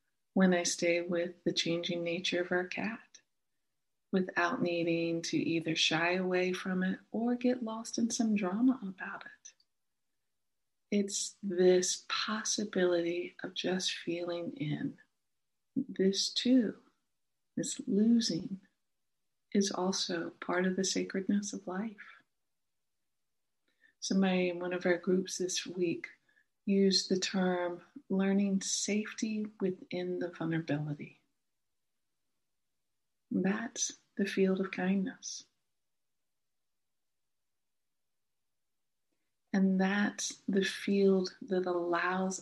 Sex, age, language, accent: female, 50-69, English, American